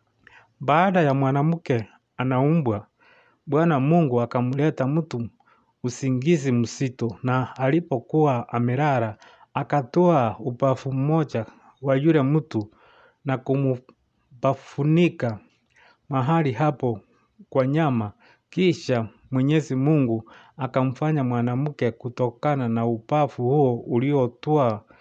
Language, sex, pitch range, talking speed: English, male, 120-150 Hz, 80 wpm